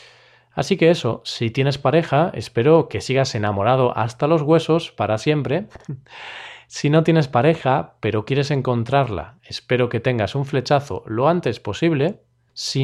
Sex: male